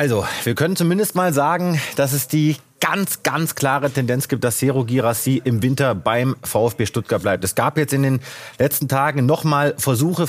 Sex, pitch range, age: male, 125-150 Hz, 30-49